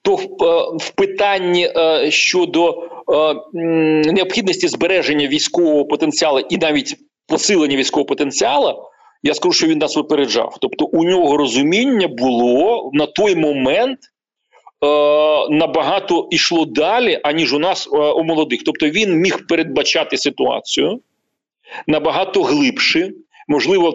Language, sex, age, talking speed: Ukrainian, male, 40-59, 115 wpm